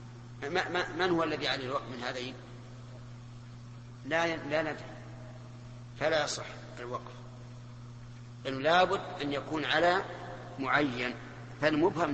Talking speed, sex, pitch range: 120 wpm, male, 120-145 Hz